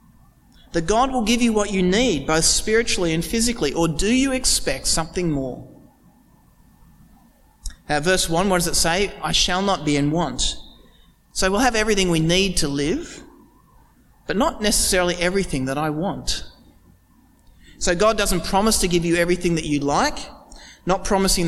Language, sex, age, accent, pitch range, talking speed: English, male, 30-49, Australian, 165-220 Hz, 165 wpm